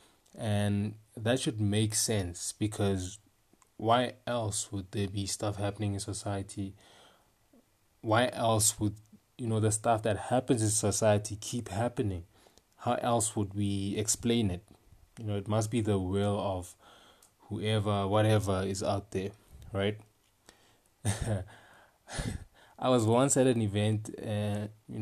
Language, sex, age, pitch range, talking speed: English, male, 20-39, 100-115 Hz, 130 wpm